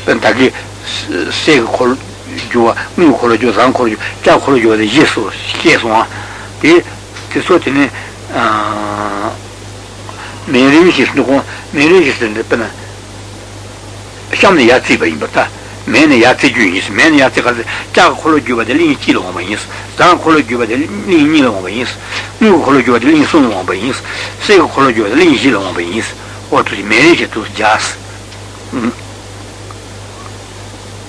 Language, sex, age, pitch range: Italian, male, 60-79, 100-140 Hz